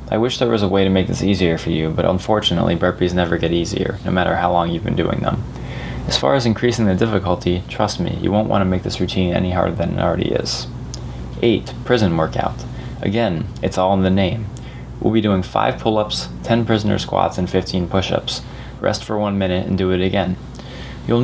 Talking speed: 215 wpm